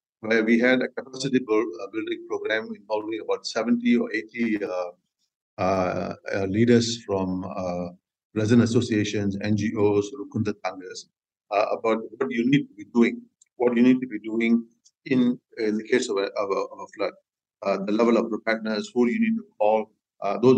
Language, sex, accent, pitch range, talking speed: English, male, Indian, 105-130 Hz, 150 wpm